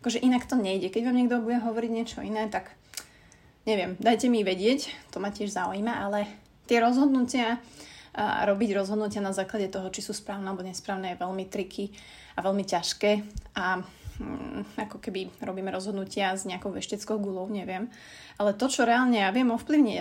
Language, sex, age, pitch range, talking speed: Slovak, female, 20-39, 200-230 Hz, 175 wpm